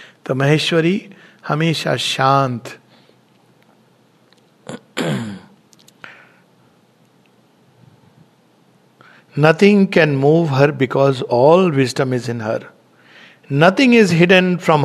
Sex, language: male, English